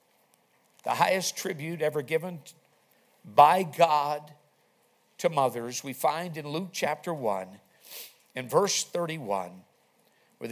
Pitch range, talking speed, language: 135-190 Hz, 110 wpm, English